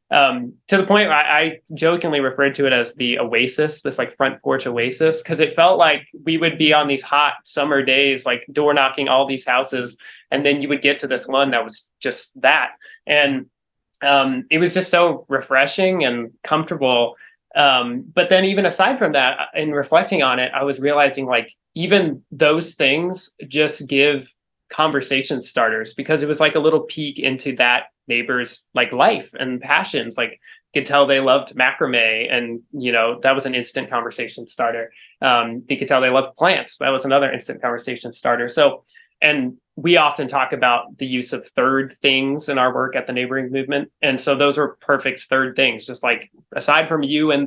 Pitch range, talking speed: 130-155 Hz, 190 wpm